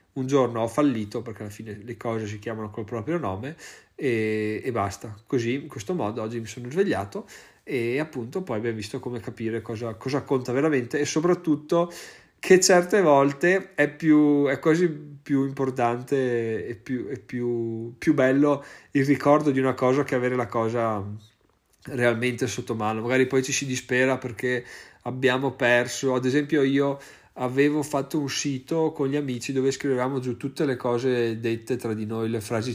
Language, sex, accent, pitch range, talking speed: Italian, male, native, 115-140 Hz, 175 wpm